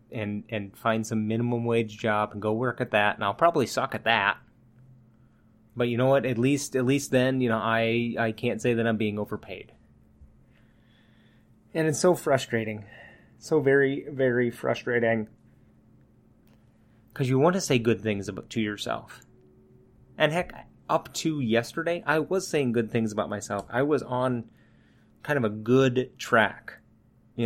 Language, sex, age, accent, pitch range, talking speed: English, male, 30-49, American, 110-125 Hz, 165 wpm